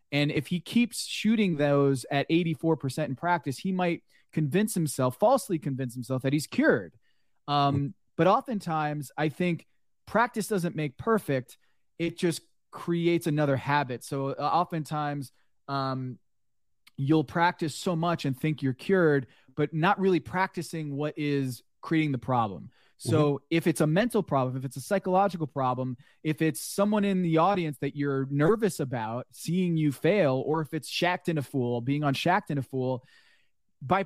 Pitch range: 140-190 Hz